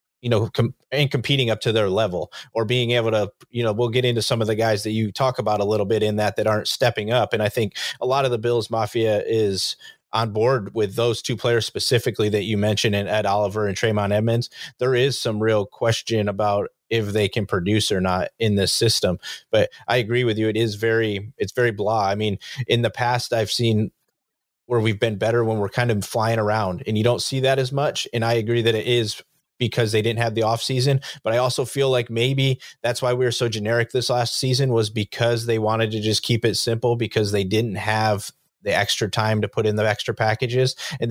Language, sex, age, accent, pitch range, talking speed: English, male, 30-49, American, 110-120 Hz, 235 wpm